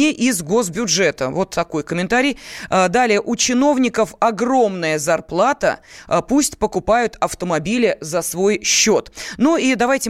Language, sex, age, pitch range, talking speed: Russian, female, 20-39, 175-245 Hz, 115 wpm